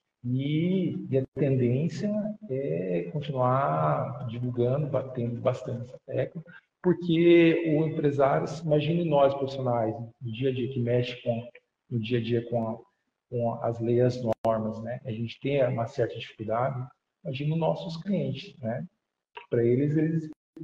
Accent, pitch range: Brazilian, 115-140 Hz